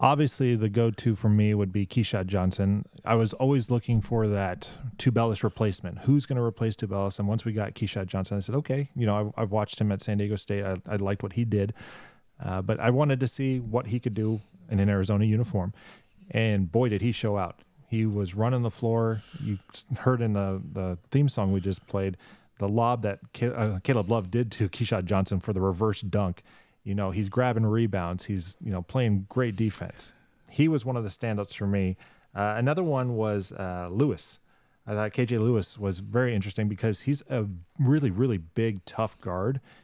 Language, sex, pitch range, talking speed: English, male, 100-120 Hz, 200 wpm